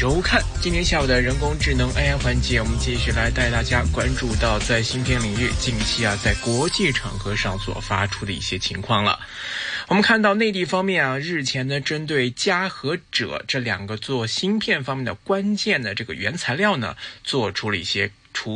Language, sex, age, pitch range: Chinese, male, 20-39, 110-180 Hz